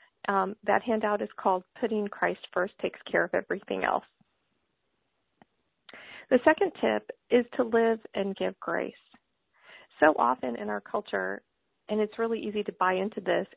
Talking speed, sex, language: 155 wpm, female, English